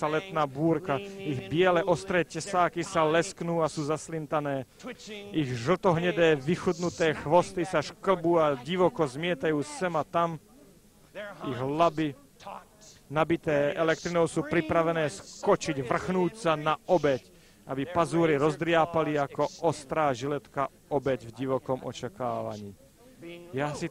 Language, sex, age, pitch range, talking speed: Slovak, male, 40-59, 140-175 Hz, 115 wpm